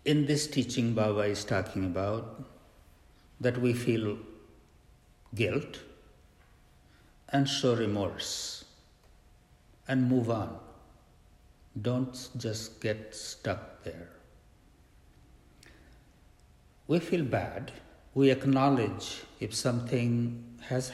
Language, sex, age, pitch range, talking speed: English, male, 60-79, 80-125 Hz, 85 wpm